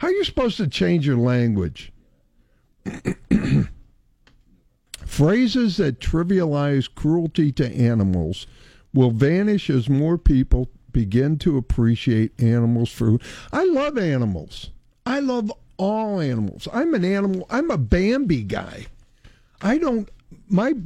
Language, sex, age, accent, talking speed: English, male, 60-79, American, 115 wpm